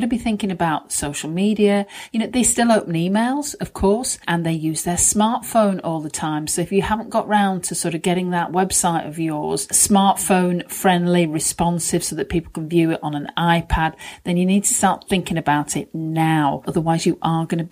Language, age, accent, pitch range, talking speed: English, 40-59, British, 165-205 Hz, 210 wpm